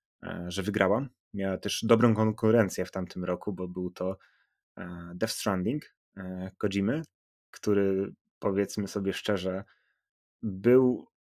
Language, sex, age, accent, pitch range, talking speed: Polish, male, 20-39, native, 90-105 Hz, 105 wpm